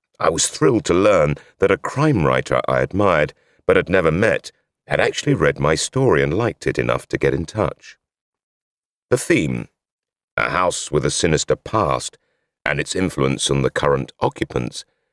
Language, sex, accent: English, male, British